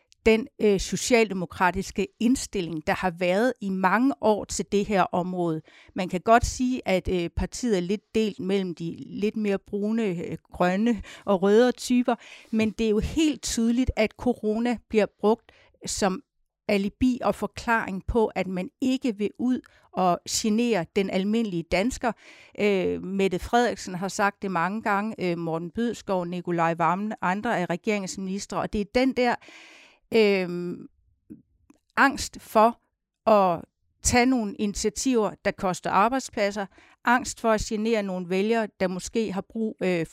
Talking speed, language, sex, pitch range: 150 wpm, Danish, female, 185-235 Hz